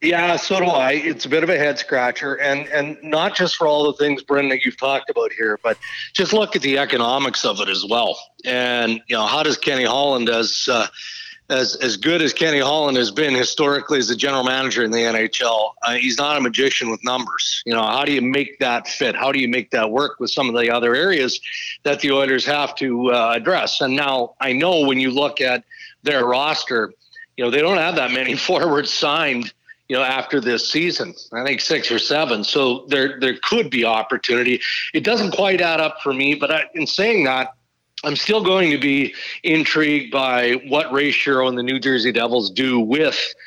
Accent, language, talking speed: American, English, 215 wpm